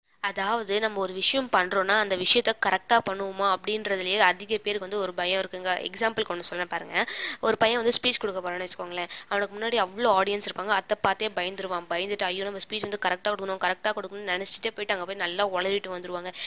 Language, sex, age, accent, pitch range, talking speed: Tamil, female, 20-39, native, 190-220 Hz, 180 wpm